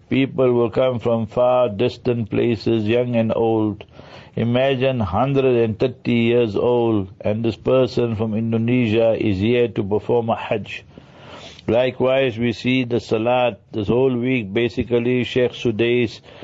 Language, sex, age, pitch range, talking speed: English, male, 60-79, 115-125 Hz, 130 wpm